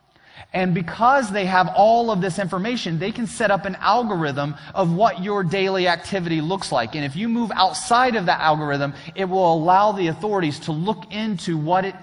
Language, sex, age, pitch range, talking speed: English, male, 30-49, 140-185 Hz, 195 wpm